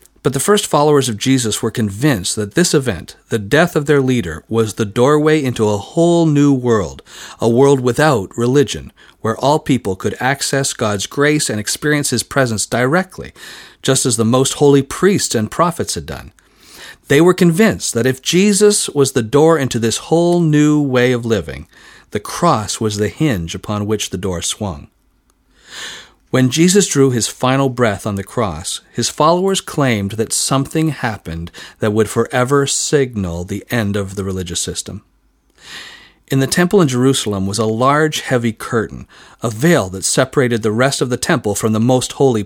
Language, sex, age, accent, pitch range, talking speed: English, male, 50-69, American, 110-145 Hz, 175 wpm